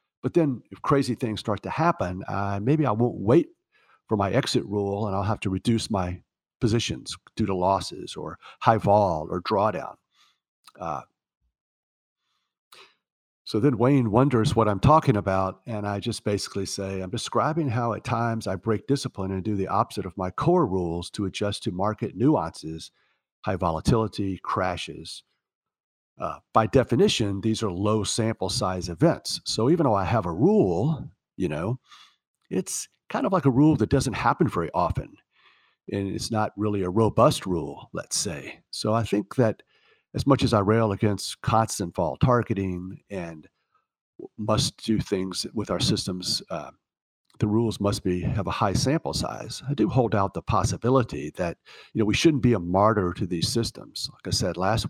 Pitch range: 95-125 Hz